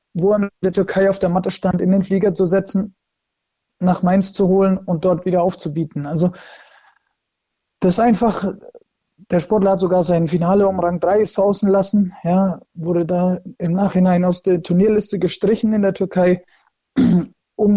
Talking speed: 160 wpm